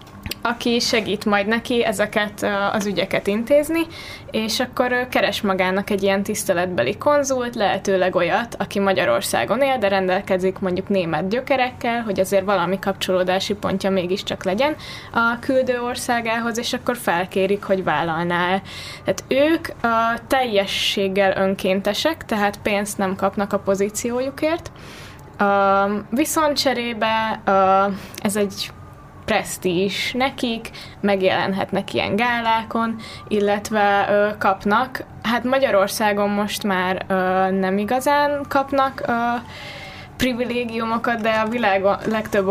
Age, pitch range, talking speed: 20-39, 195-230 Hz, 110 wpm